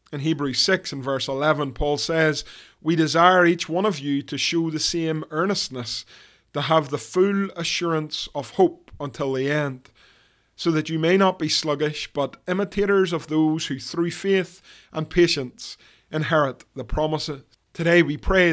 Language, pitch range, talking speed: English, 135-170 Hz, 165 wpm